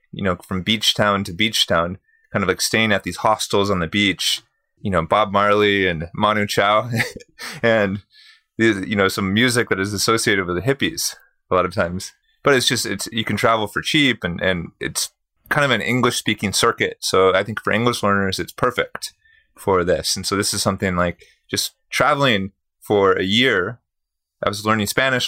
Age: 30-49